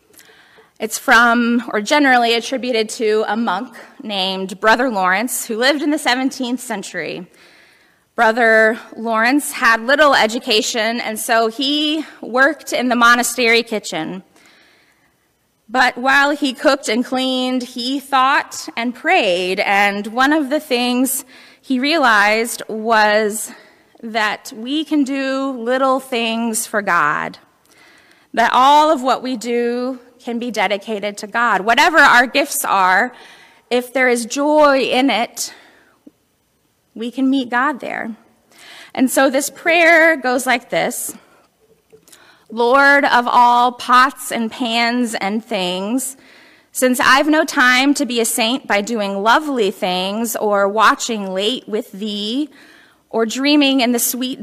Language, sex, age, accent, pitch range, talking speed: English, female, 20-39, American, 225-270 Hz, 130 wpm